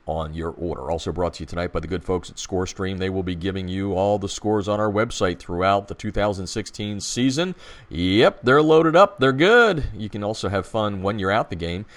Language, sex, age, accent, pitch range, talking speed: English, male, 40-59, American, 90-125 Hz, 230 wpm